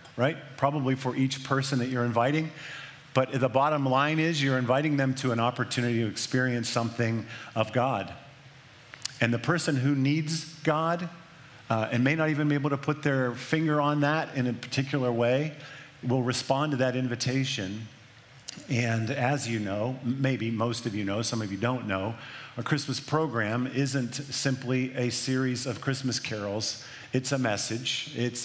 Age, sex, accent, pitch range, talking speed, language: 50-69, male, American, 120-145 Hz, 170 wpm, English